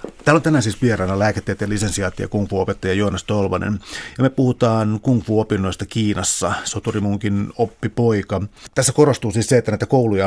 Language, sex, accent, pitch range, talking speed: Finnish, male, native, 105-120 Hz, 150 wpm